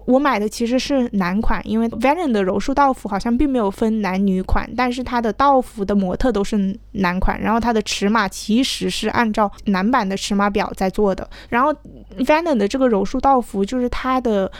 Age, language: 20-39, Chinese